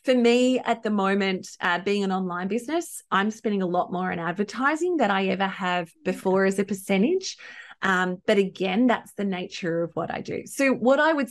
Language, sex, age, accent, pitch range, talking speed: English, female, 30-49, Australian, 180-225 Hz, 205 wpm